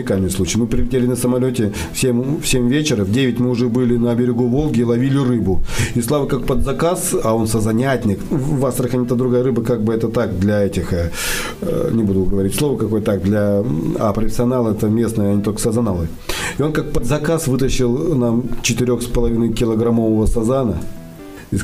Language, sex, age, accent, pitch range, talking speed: Russian, male, 40-59, native, 105-125 Hz, 185 wpm